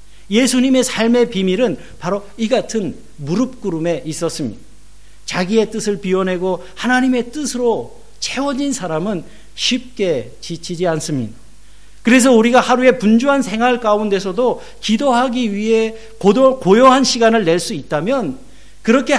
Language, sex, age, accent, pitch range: Korean, male, 50-69, native, 165-225 Hz